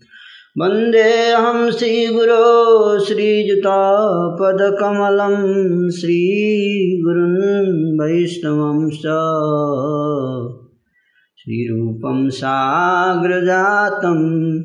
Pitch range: 135-195 Hz